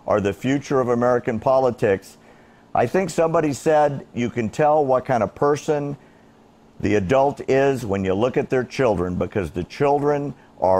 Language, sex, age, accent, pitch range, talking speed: English, male, 50-69, American, 100-130 Hz, 165 wpm